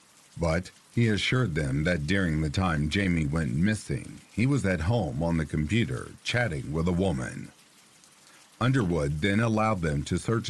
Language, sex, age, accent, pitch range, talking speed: English, male, 50-69, American, 80-110 Hz, 160 wpm